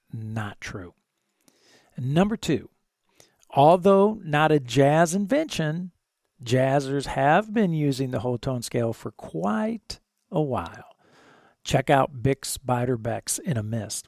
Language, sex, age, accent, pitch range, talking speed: English, male, 50-69, American, 110-145 Hz, 125 wpm